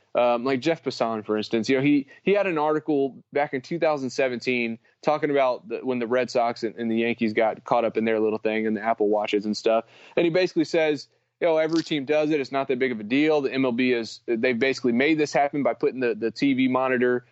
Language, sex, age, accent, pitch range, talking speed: English, male, 20-39, American, 120-150 Hz, 250 wpm